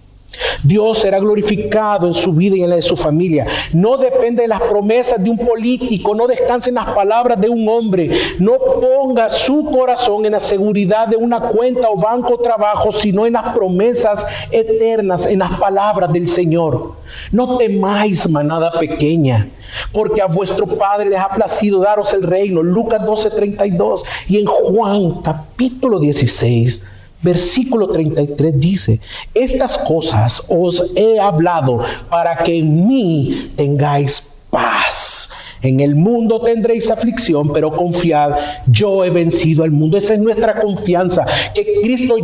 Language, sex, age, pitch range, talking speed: Spanish, male, 50-69, 165-230 Hz, 150 wpm